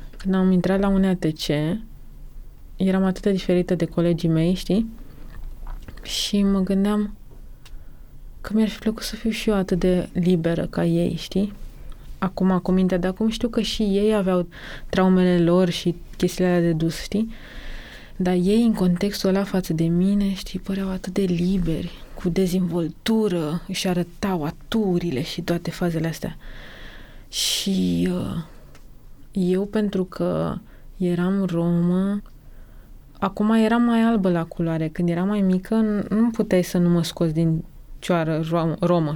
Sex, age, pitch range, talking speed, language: female, 20-39, 175-200 Hz, 150 wpm, Romanian